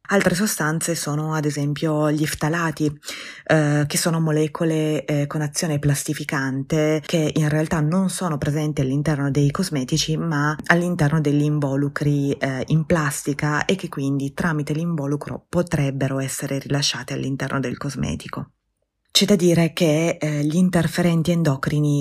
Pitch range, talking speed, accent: 145-175 Hz, 135 wpm, native